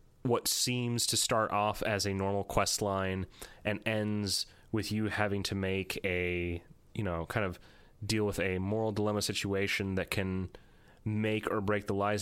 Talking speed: 170 wpm